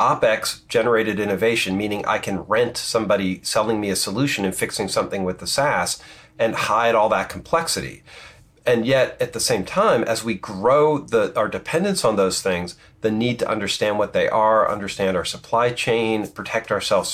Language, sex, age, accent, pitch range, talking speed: English, male, 40-59, American, 100-140 Hz, 175 wpm